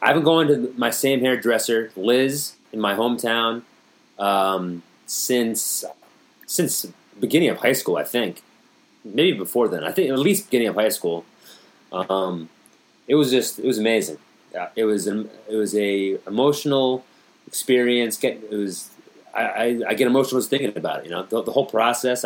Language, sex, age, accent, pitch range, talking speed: English, male, 30-49, American, 105-125 Hz, 175 wpm